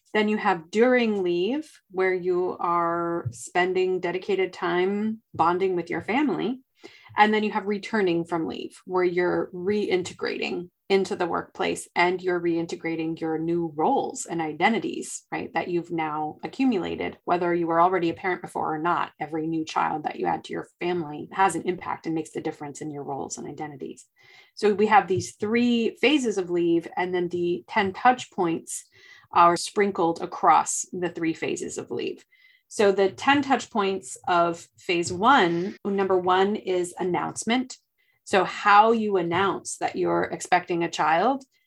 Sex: female